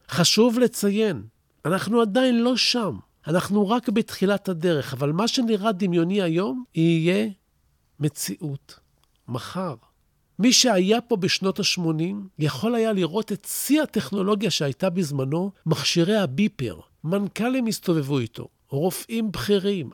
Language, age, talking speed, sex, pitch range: Hebrew, 50-69, 115 wpm, male, 155-215 Hz